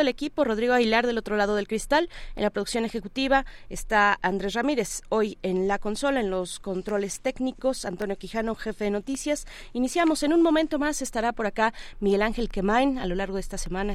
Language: Spanish